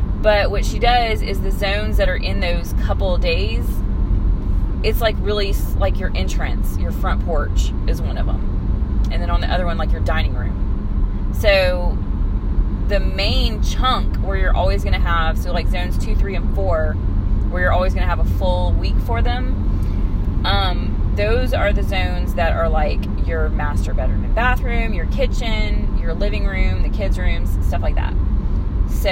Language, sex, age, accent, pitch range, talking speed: English, female, 30-49, American, 85-95 Hz, 185 wpm